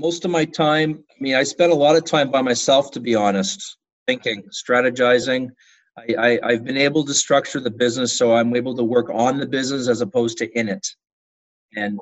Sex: male